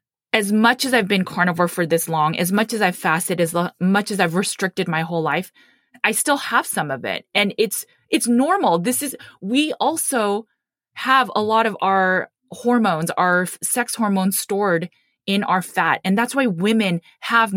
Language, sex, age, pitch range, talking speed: English, female, 20-39, 170-215 Hz, 185 wpm